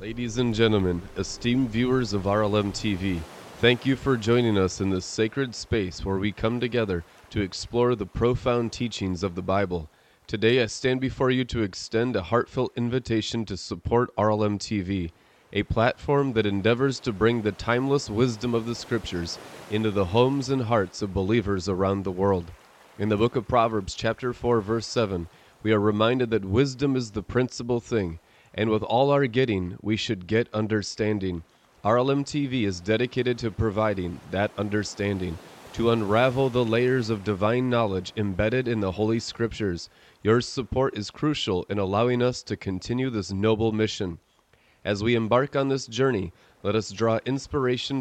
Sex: male